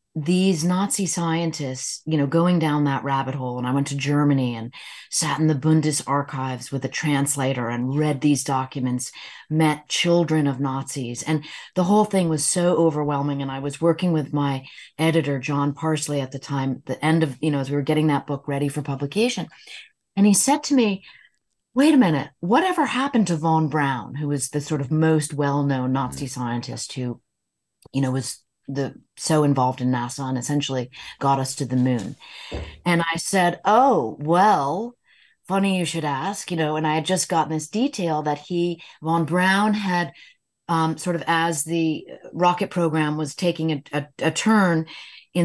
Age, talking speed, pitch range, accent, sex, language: 30-49, 185 wpm, 140-170 Hz, American, female, English